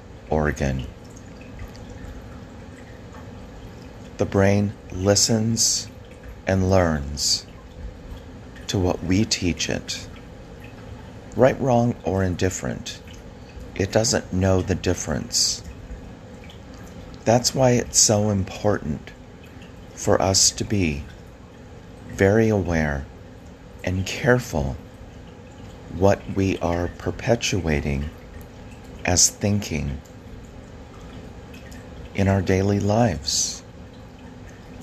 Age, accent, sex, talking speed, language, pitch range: 40-59, American, male, 75 wpm, English, 85-100 Hz